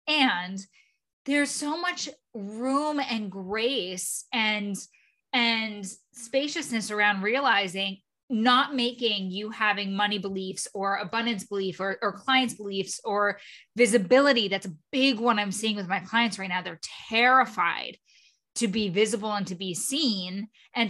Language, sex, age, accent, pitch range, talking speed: English, female, 20-39, American, 190-245 Hz, 140 wpm